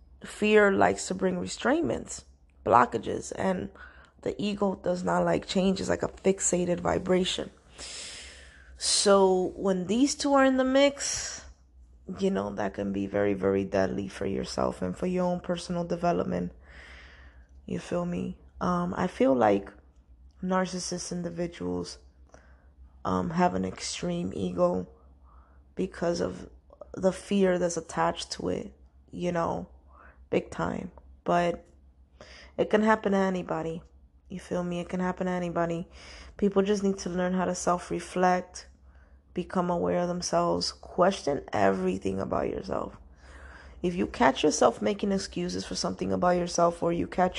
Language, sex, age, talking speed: English, female, 20-39, 140 wpm